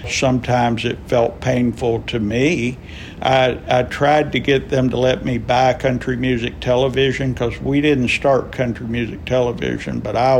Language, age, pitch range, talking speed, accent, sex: English, 60-79, 115-130 Hz, 160 wpm, American, male